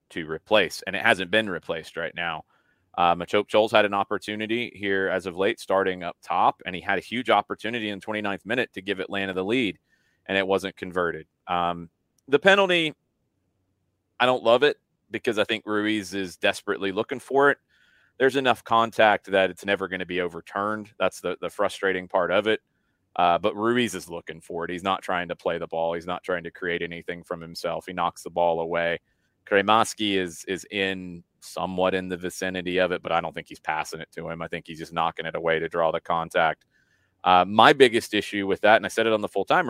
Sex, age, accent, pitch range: male, 30-49, American, 90-105 Hz